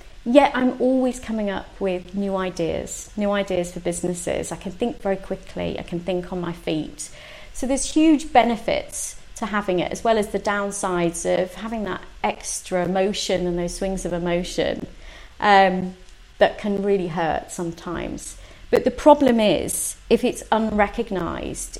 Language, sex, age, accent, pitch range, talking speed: English, female, 30-49, British, 180-220 Hz, 160 wpm